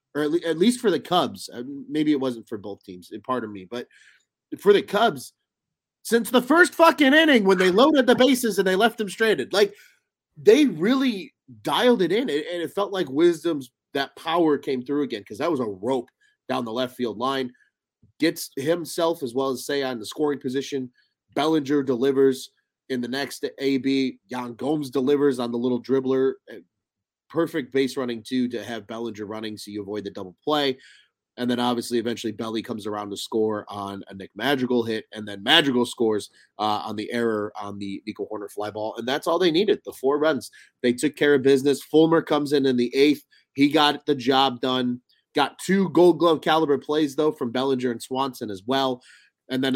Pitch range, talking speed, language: 120-165 Hz, 195 wpm, English